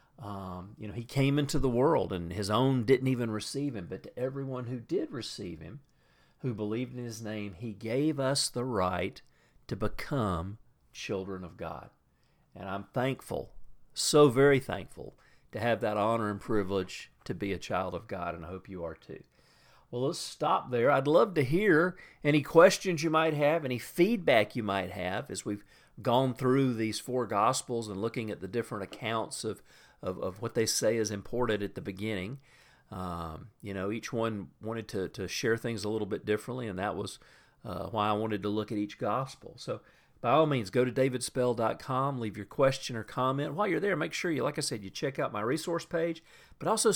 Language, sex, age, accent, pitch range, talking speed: English, male, 50-69, American, 100-135 Hz, 200 wpm